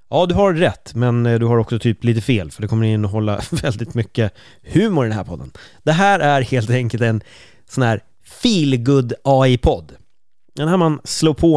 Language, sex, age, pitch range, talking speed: Swedish, male, 30-49, 110-140 Hz, 200 wpm